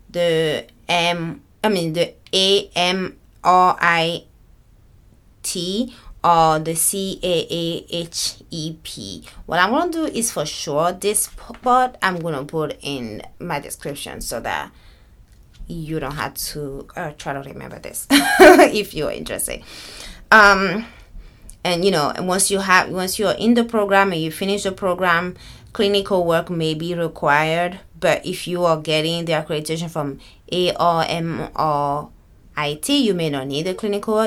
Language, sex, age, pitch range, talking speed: English, female, 20-39, 140-185 Hz, 155 wpm